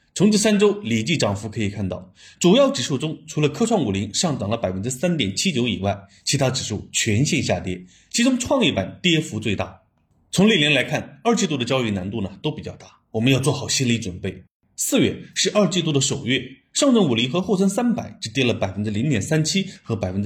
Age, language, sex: 30-49, Chinese, male